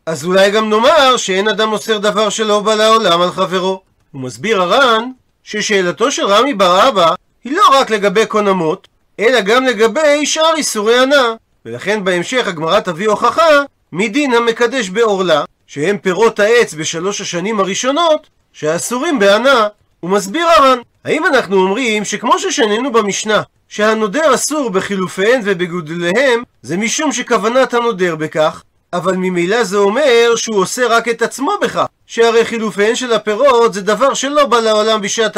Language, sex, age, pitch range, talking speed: Hebrew, male, 40-59, 190-250 Hz, 140 wpm